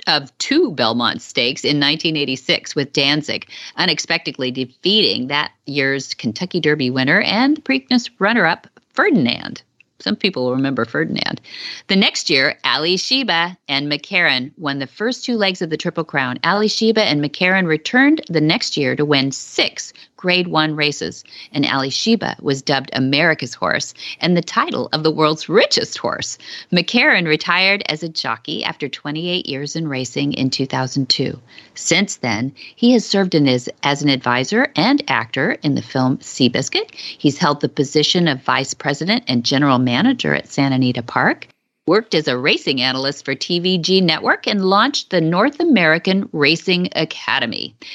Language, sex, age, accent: English, female, 40-59, American